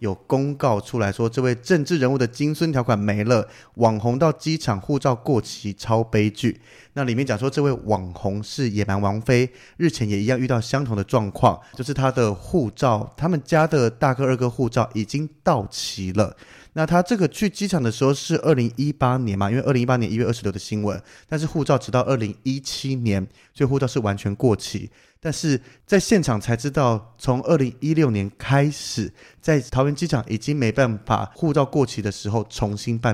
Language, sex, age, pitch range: Chinese, male, 30-49, 105-140 Hz